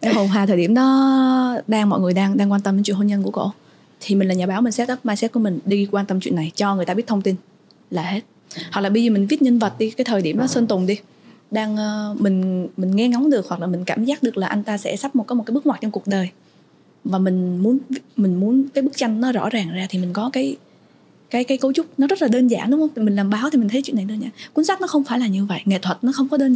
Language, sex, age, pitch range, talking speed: Vietnamese, female, 20-39, 200-265 Hz, 305 wpm